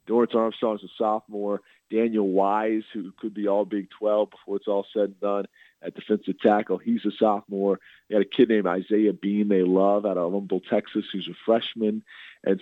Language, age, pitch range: English, 40-59, 95-105 Hz